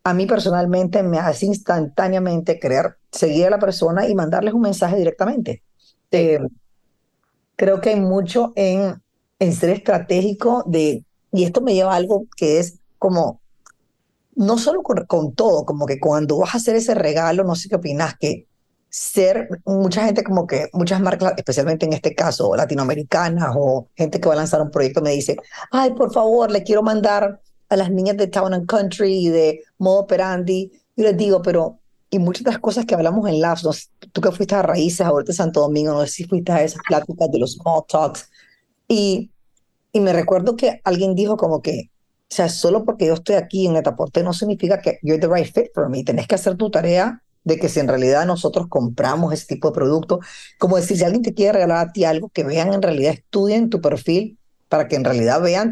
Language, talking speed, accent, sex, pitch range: English, 210 wpm, American, female, 165-205 Hz